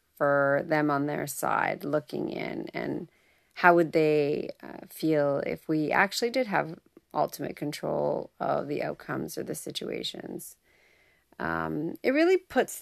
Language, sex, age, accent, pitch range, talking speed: English, female, 30-49, American, 145-175 Hz, 140 wpm